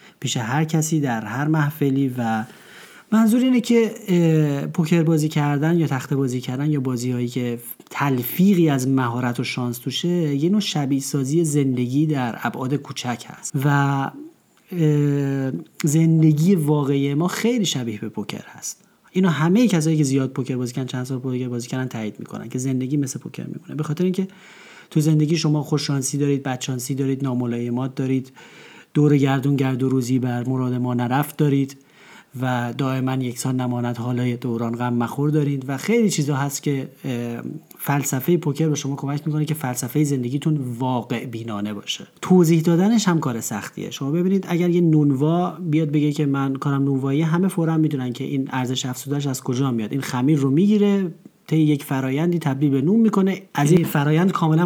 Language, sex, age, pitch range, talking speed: Persian, male, 40-59, 130-165 Hz, 170 wpm